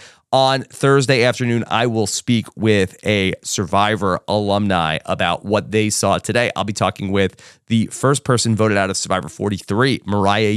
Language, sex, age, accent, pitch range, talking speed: English, male, 30-49, American, 100-125 Hz, 160 wpm